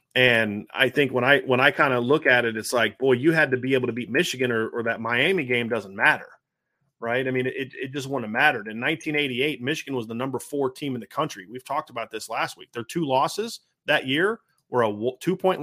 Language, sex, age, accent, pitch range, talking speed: English, male, 30-49, American, 125-150 Hz, 245 wpm